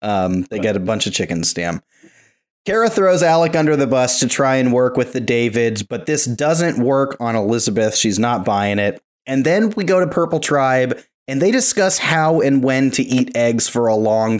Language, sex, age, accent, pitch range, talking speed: English, male, 30-49, American, 120-155 Hz, 210 wpm